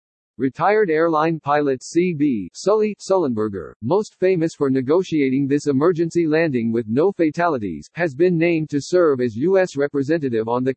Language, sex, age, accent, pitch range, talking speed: English, male, 50-69, American, 130-175 Hz, 145 wpm